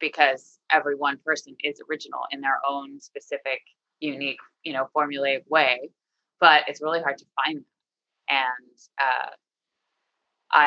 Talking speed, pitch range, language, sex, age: 135 wpm, 140-180 Hz, English, female, 20-39